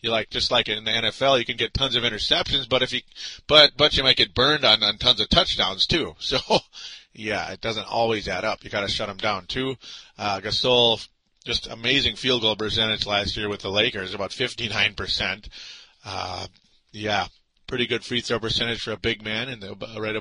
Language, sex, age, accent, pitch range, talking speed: English, male, 30-49, American, 105-130 Hz, 205 wpm